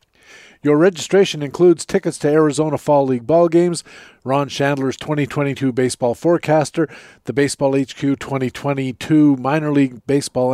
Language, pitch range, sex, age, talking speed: English, 130-160 Hz, male, 50-69, 125 wpm